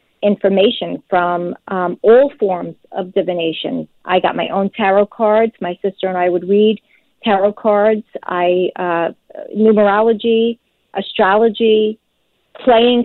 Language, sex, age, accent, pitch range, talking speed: English, female, 40-59, American, 185-220 Hz, 120 wpm